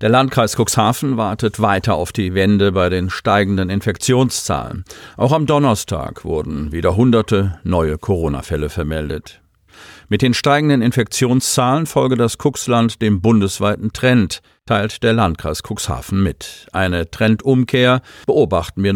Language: German